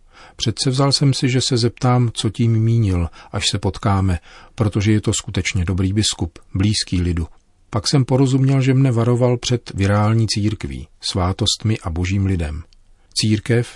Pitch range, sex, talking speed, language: 95-115 Hz, male, 155 wpm, Czech